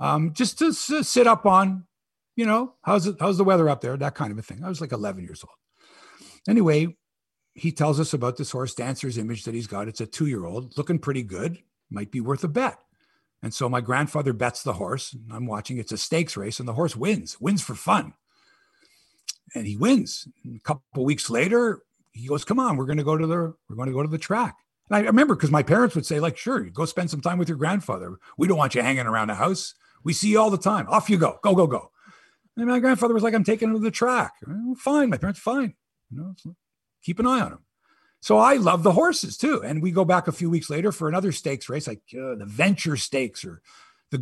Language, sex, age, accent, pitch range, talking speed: English, male, 50-69, American, 130-195 Hz, 250 wpm